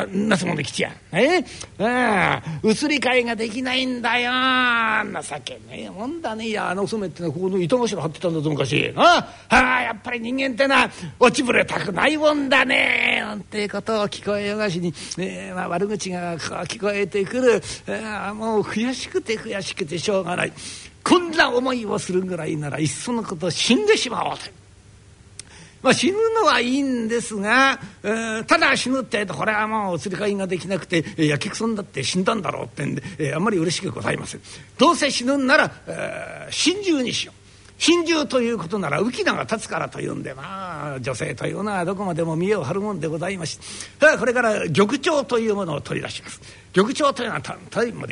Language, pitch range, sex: Japanese, 160-240 Hz, male